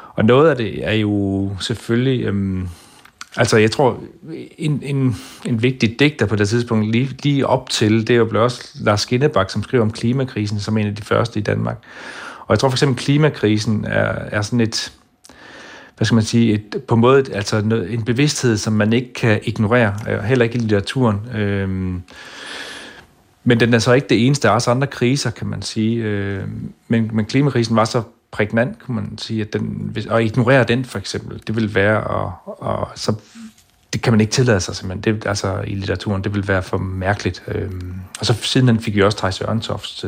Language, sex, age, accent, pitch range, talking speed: Danish, male, 40-59, native, 105-120 Hz, 200 wpm